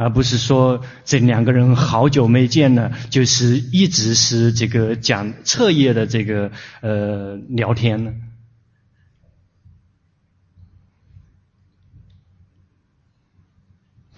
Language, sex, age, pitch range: Chinese, male, 20-39, 100-125 Hz